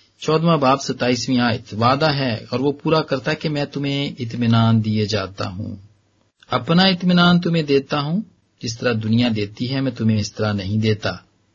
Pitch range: 105-130 Hz